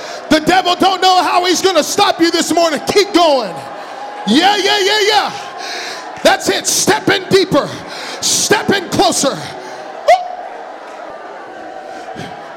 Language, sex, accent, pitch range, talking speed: English, male, American, 310-370 Hz, 125 wpm